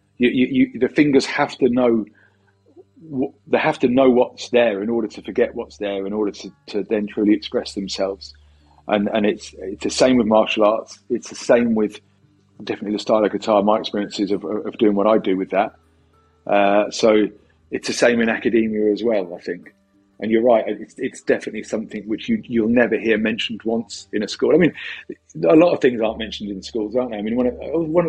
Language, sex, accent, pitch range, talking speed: English, male, British, 100-125 Hz, 215 wpm